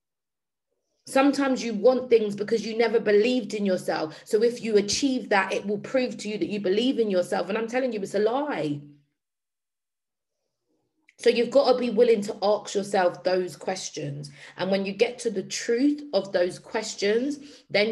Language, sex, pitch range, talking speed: English, female, 165-235 Hz, 180 wpm